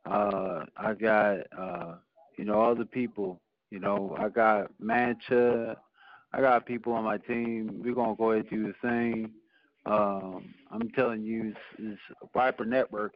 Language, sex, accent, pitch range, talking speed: English, male, American, 105-120 Hz, 165 wpm